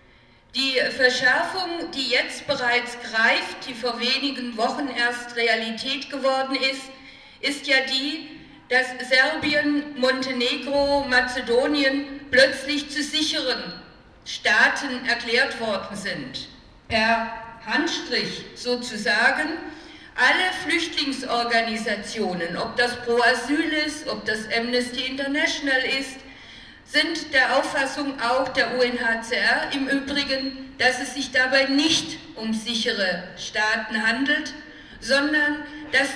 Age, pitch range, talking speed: 50-69, 235-285 Hz, 105 wpm